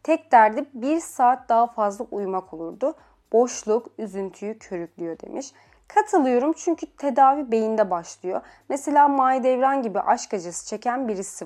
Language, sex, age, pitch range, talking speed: Turkish, female, 30-49, 210-275 Hz, 125 wpm